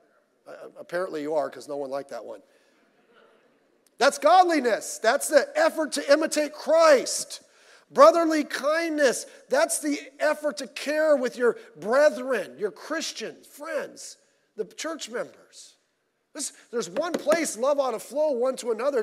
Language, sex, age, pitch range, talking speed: English, male, 40-59, 190-310 Hz, 135 wpm